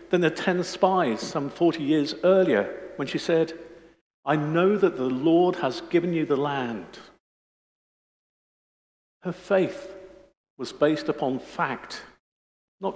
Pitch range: 125-170 Hz